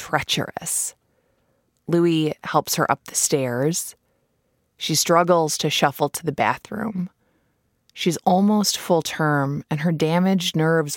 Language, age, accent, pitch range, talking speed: English, 20-39, American, 150-190 Hz, 120 wpm